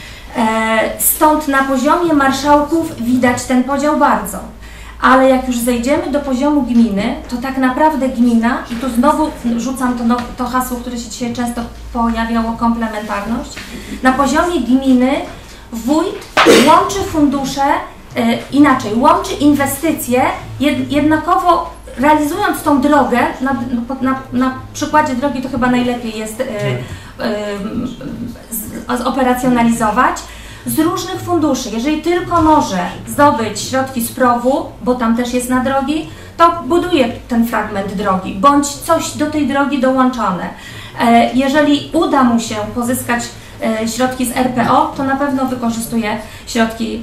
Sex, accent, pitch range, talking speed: female, native, 235-295 Hz, 120 wpm